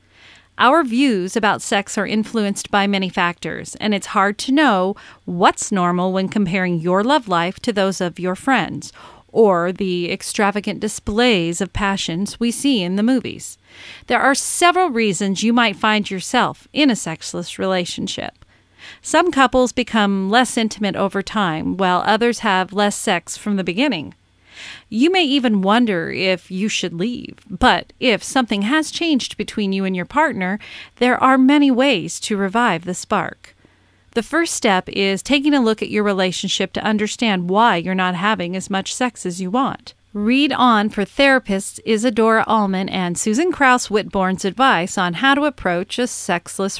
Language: English